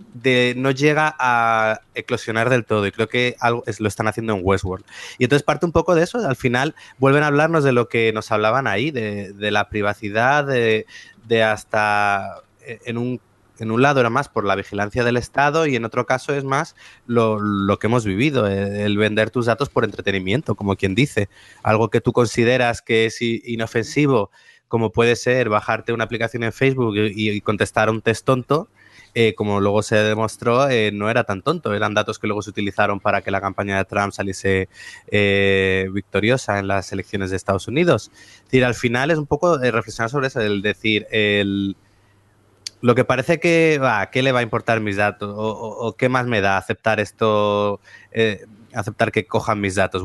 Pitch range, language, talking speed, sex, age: 105-125 Hz, Spanish, 195 wpm, male, 30-49